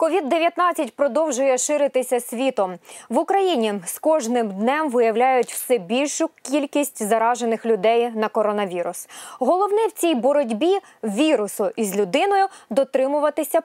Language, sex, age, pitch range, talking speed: Ukrainian, female, 20-39, 225-300 Hz, 115 wpm